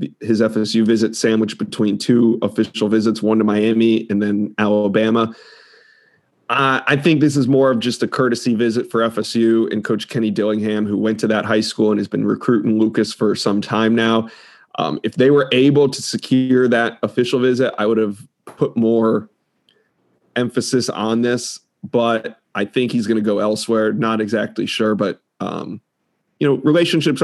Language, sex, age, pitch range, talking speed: English, male, 30-49, 110-125 Hz, 175 wpm